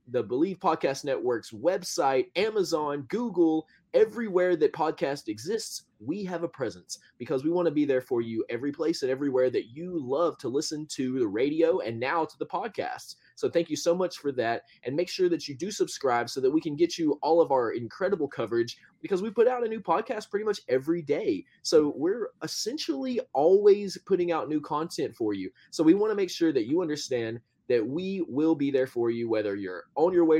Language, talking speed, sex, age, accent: English, 210 wpm, male, 20-39, American